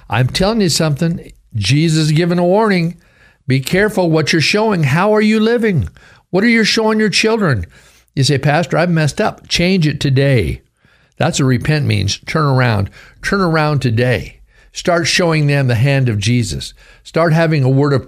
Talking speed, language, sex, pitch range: 180 wpm, English, male, 105-140 Hz